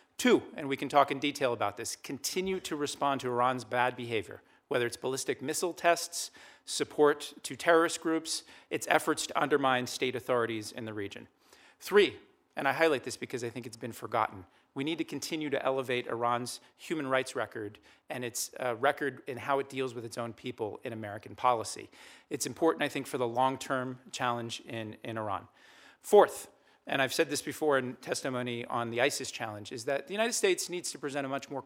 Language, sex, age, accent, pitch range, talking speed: English, male, 40-59, American, 120-145 Hz, 195 wpm